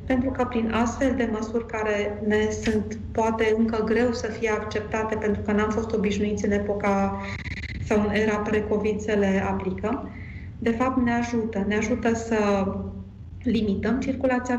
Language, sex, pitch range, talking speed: Romanian, female, 200-235 Hz, 155 wpm